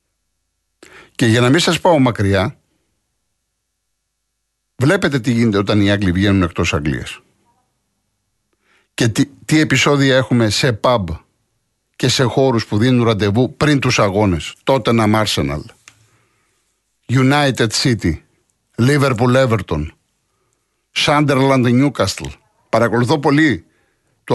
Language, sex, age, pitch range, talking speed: Greek, male, 50-69, 105-145 Hz, 105 wpm